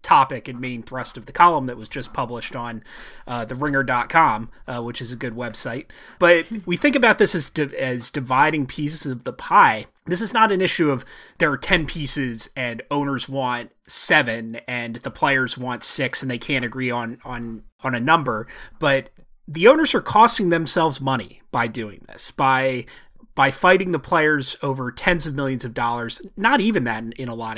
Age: 30-49